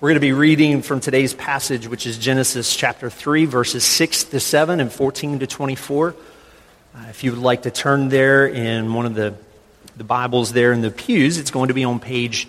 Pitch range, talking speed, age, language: 115-140 Hz, 215 wpm, 40-59, English